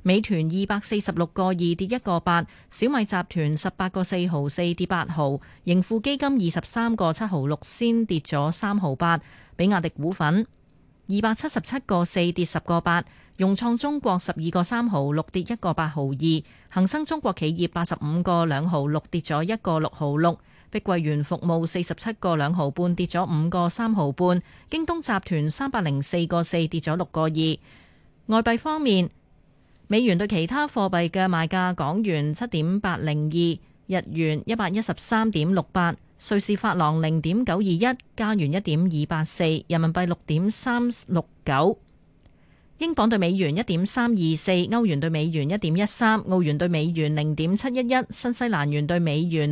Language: Chinese